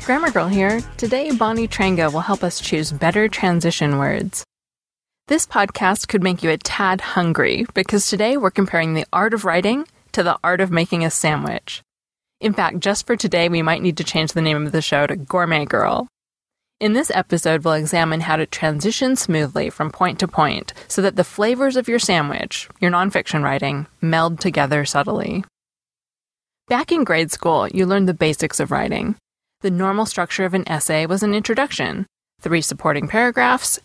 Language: English